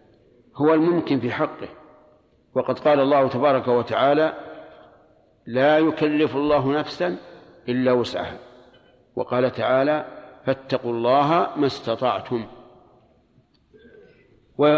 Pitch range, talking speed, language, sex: 125-145 Hz, 90 wpm, Arabic, male